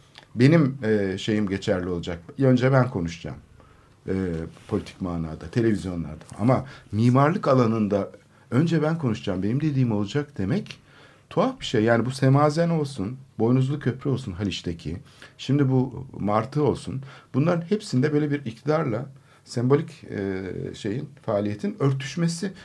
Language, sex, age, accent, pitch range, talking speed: Turkish, male, 50-69, native, 105-140 Hz, 125 wpm